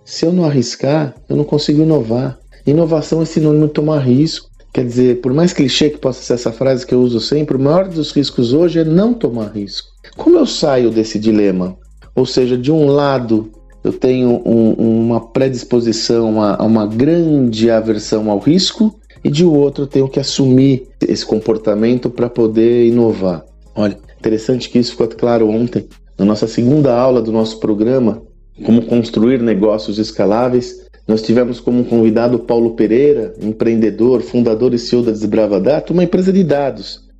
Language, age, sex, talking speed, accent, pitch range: Portuguese, 50-69, male, 170 wpm, Brazilian, 110-145 Hz